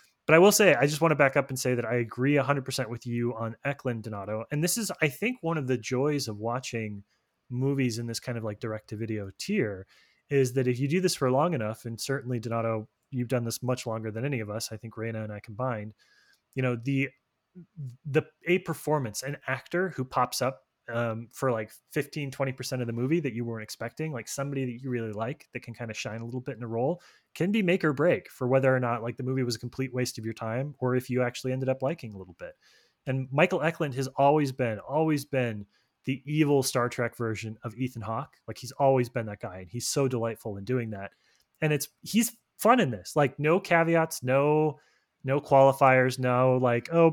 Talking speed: 230 wpm